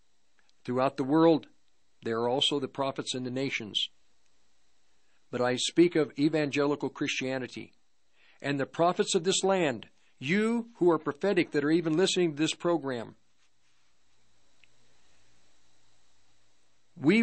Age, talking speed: 50-69, 120 wpm